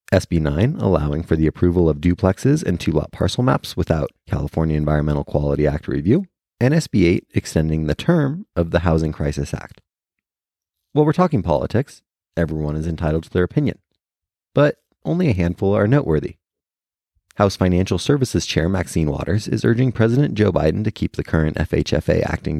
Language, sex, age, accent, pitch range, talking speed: English, male, 30-49, American, 80-120 Hz, 165 wpm